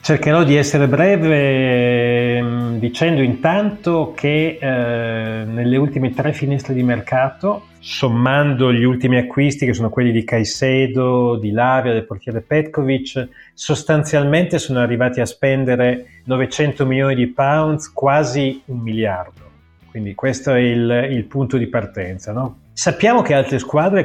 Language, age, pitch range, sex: Italian, 30-49, 120-145 Hz, male